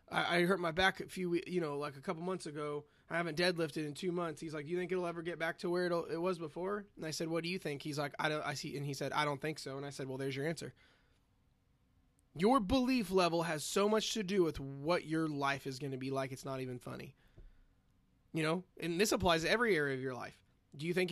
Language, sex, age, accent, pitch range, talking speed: English, male, 20-39, American, 150-195 Hz, 270 wpm